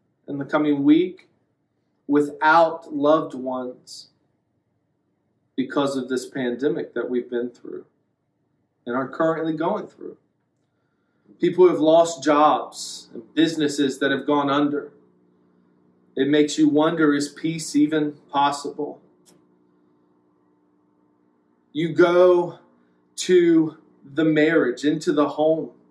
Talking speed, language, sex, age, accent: 110 wpm, English, male, 40-59, American